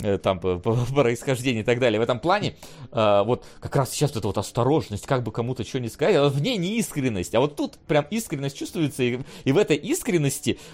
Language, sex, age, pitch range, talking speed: Russian, male, 30-49, 120-155 Hz, 225 wpm